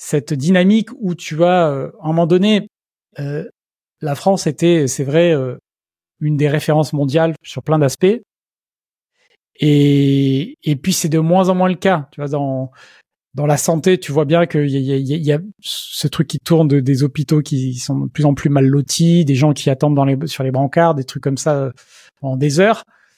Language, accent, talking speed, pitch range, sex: French, French, 215 wpm, 145-180 Hz, male